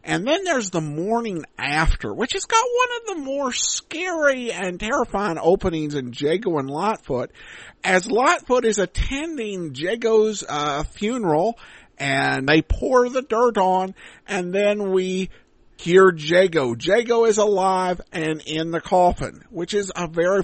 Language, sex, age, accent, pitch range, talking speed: English, male, 50-69, American, 160-225 Hz, 145 wpm